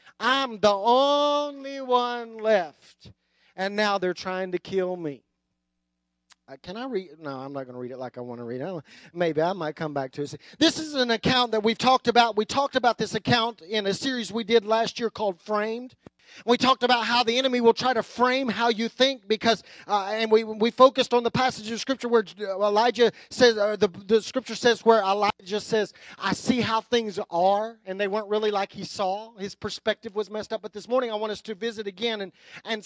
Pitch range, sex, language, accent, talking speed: 195-250 Hz, male, English, American, 215 wpm